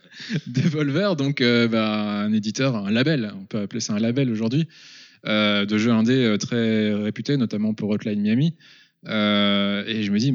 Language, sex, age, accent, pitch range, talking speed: French, male, 20-39, French, 110-135 Hz, 175 wpm